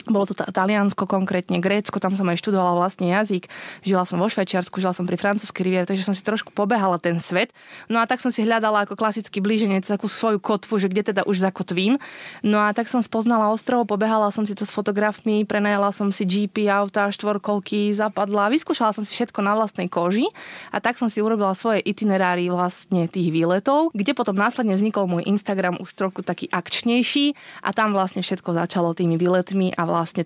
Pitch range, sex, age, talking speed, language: 180-210 Hz, female, 20-39, 195 wpm, Slovak